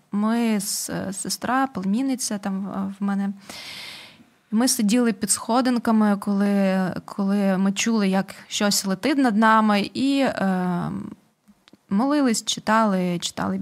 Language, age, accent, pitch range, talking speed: Ukrainian, 20-39, native, 200-240 Hz, 110 wpm